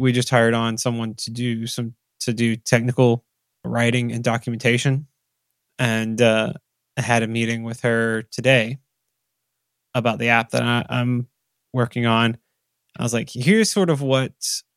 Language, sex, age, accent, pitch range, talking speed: English, male, 20-39, American, 120-140 Hz, 155 wpm